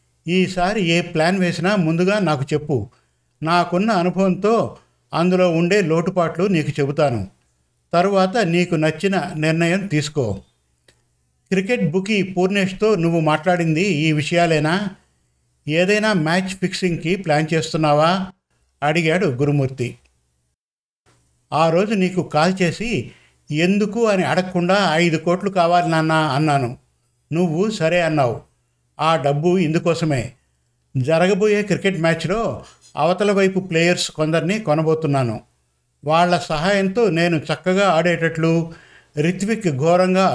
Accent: native